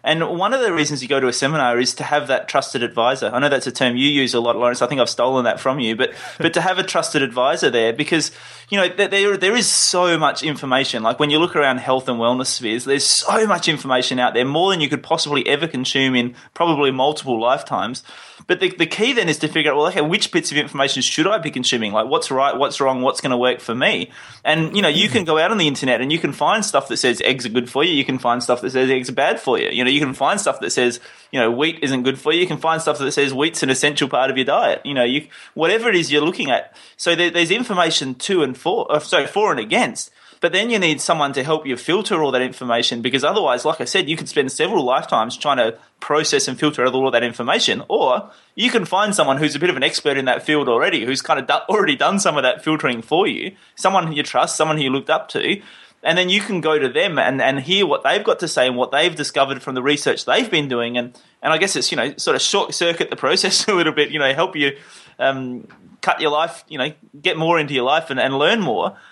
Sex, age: male, 20-39